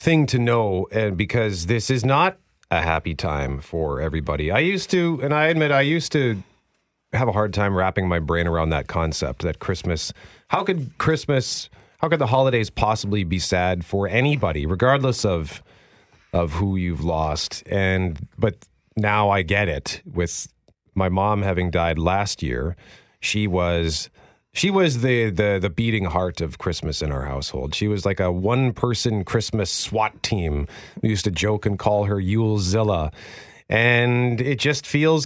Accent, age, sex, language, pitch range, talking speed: American, 40-59, male, English, 90-120 Hz, 170 wpm